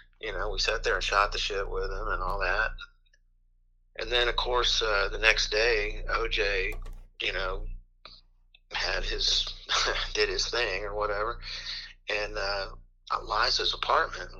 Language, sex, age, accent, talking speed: English, male, 40-59, American, 150 wpm